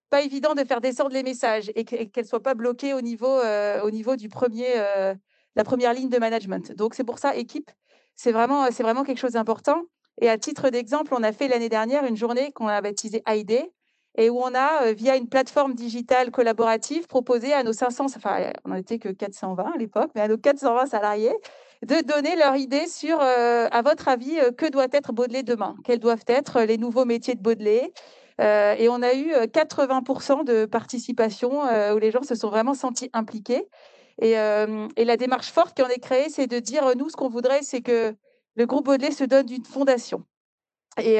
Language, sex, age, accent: French, female, 40-59, French